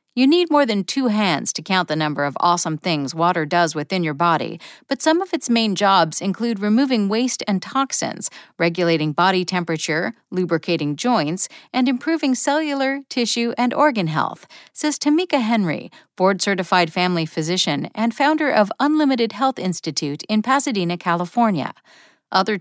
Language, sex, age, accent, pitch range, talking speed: English, female, 50-69, American, 175-255 Hz, 150 wpm